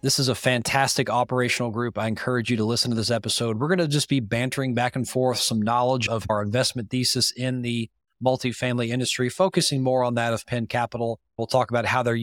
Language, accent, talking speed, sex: English, American, 220 wpm, male